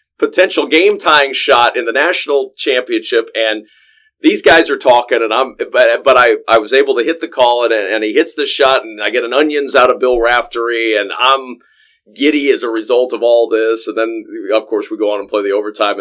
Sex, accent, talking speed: male, American, 225 wpm